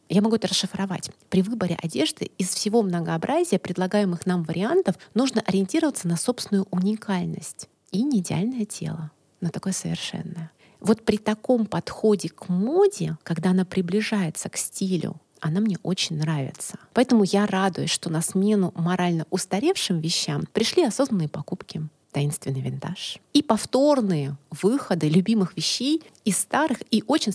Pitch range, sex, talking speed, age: 170-210 Hz, female, 140 wpm, 30-49